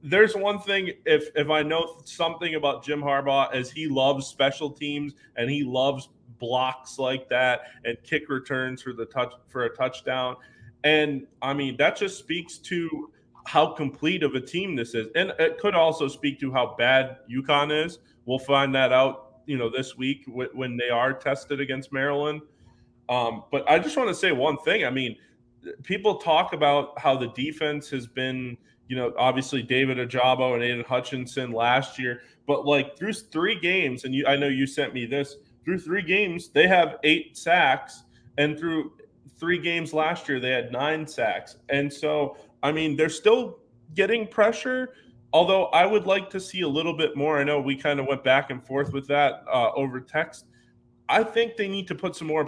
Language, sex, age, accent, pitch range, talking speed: English, male, 20-39, American, 130-155 Hz, 195 wpm